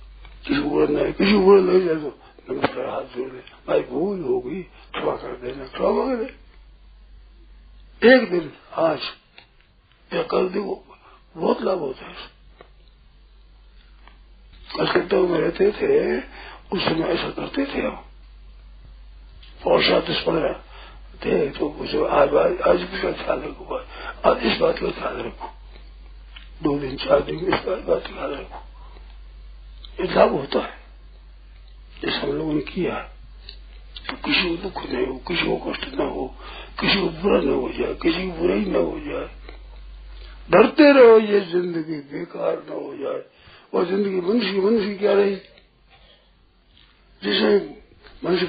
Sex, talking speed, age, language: male, 125 wpm, 50-69, Hindi